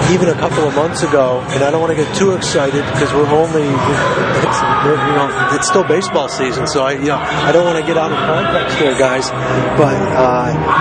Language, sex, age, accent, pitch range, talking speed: English, male, 40-59, American, 140-165 Hz, 220 wpm